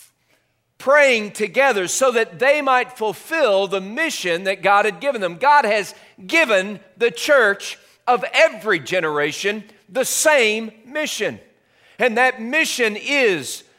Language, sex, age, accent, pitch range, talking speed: English, male, 40-59, American, 215-285 Hz, 125 wpm